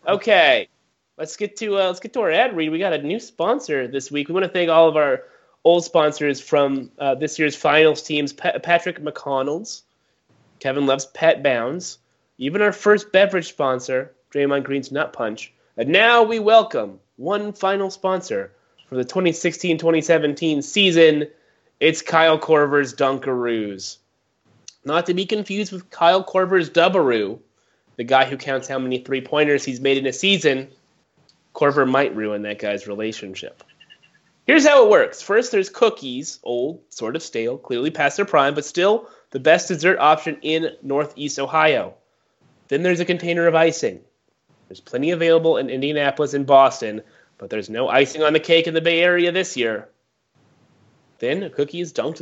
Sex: male